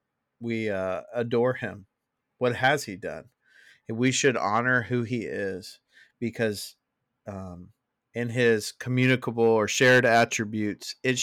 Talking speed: 125 wpm